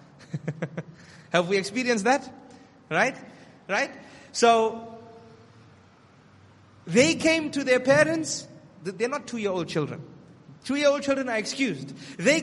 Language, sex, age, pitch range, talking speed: English, male, 30-49, 175-275 Hz, 120 wpm